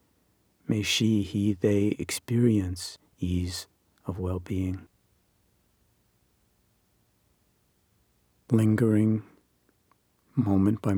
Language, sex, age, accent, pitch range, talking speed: English, male, 50-69, American, 95-110 Hz, 60 wpm